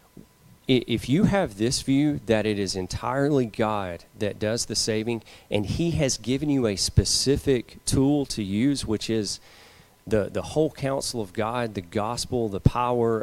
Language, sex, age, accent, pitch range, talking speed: English, male, 30-49, American, 110-145 Hz, 165 wpm